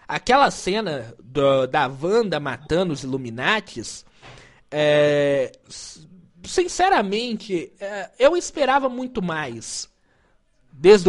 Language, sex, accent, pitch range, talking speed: Portuguese, male, Brazilian, 145-225 Hz, 70 wpm